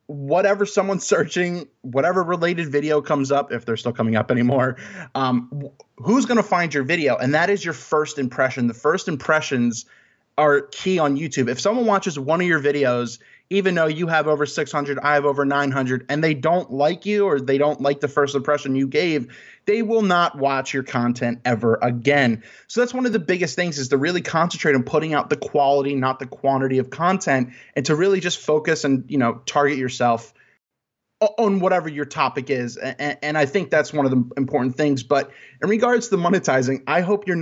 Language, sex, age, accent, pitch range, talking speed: English, male, 20-39, American, 130-165 Hz, 210 wpm